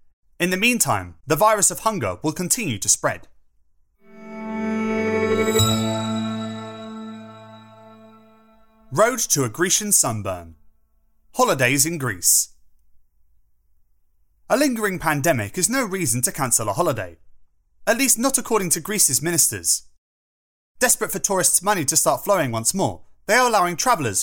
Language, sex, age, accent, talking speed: English, male, 30-49, British, 120 wpm